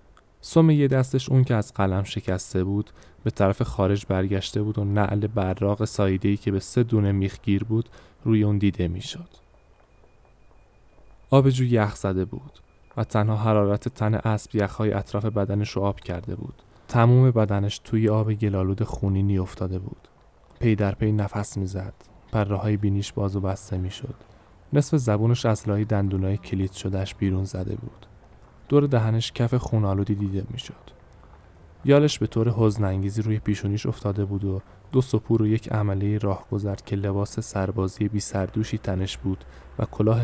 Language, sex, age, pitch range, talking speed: Persian, male, 10-29, 95-115 Hz, 155 wpm